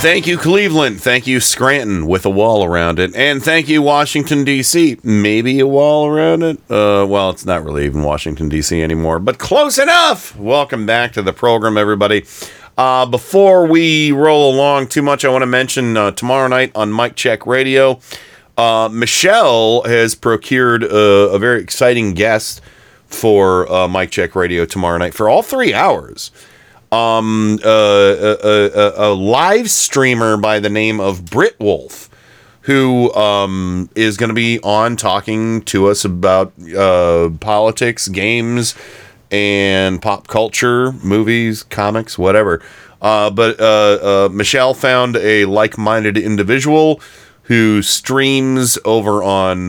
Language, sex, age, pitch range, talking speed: English, male, 40-59, 100-130 Hz, 150 wpm